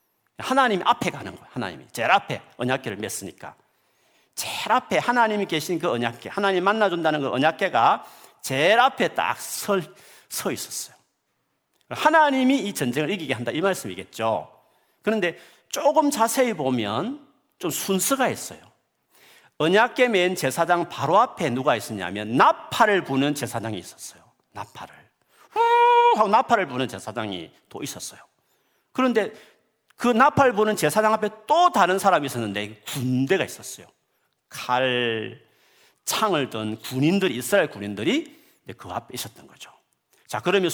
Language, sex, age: Korean, male, 40-59